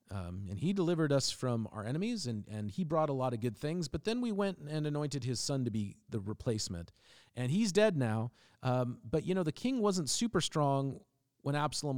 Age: 40-59